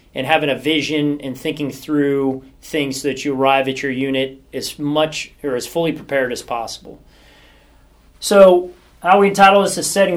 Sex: male